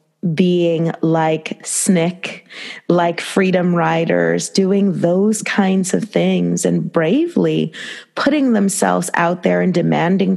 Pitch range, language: 165-195 Hz, English